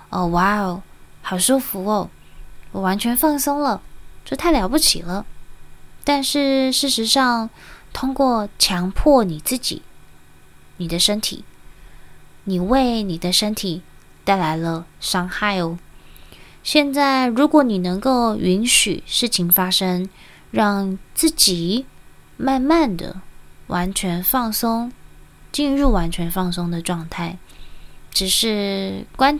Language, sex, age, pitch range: Chinese, female, 20-39, 165-240 Hz